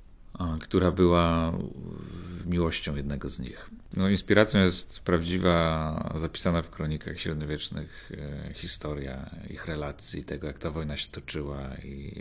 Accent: native